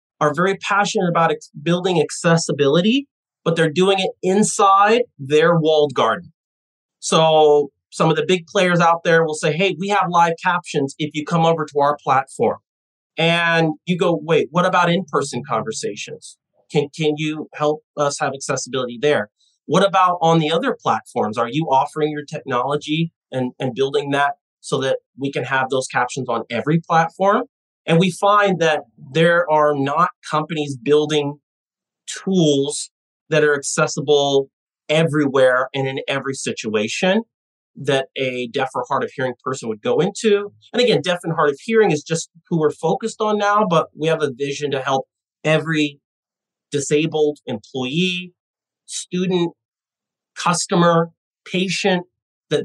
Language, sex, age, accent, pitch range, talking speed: English, male, 30-49, American, 145-180 Hz, 155 wpm